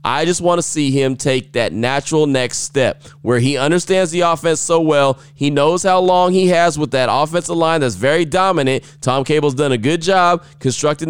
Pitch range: 130-170 Hz